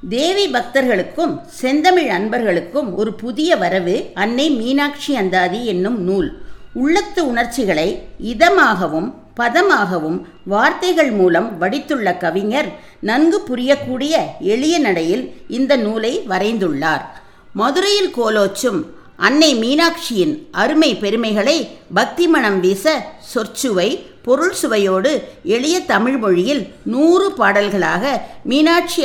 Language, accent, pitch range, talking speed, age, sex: Tamil, native, 205-315 Hz, 90 wpm, 50-69, female